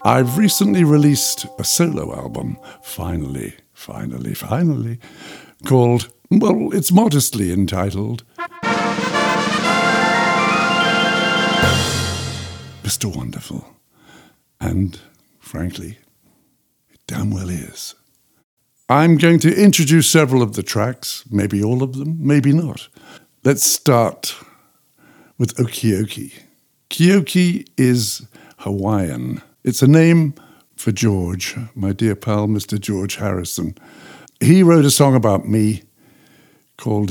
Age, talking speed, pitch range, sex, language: 60-79, 100 wpm, 100-140 Hz, male, English